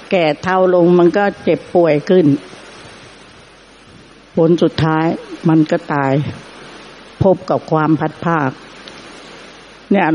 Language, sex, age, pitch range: Thai, female, 70-89, 165-200 Hz